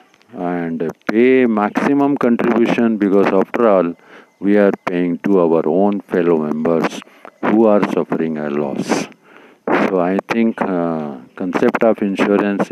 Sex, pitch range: male, 90-110 Hz